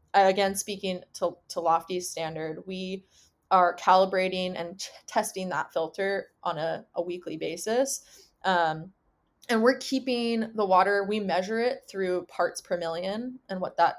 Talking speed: 150 wpm